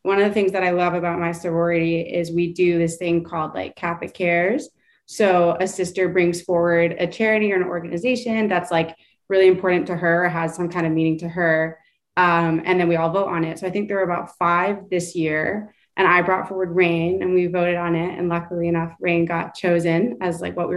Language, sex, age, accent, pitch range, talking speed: English, female, 20-39, American, 170-190 Hz, 230 wpm